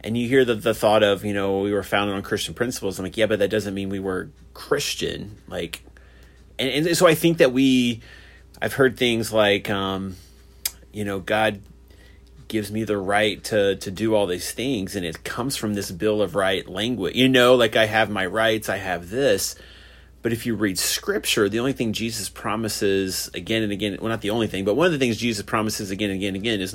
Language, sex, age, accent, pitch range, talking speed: English, male, 30-49, American, 95-115 Hz, 225 wpm